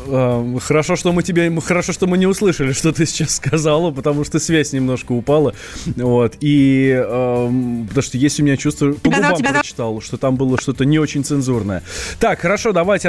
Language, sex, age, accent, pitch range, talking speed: Russian, male, 20-39, native, 120-165 Hz, 175 wpm